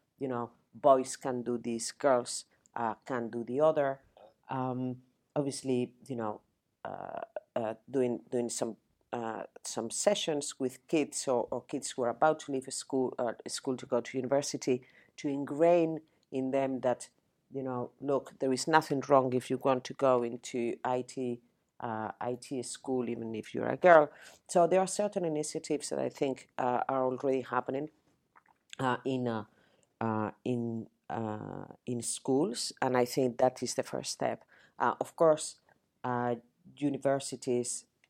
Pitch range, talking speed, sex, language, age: 125-150 Hz, 160 wpm, female, English, 40-59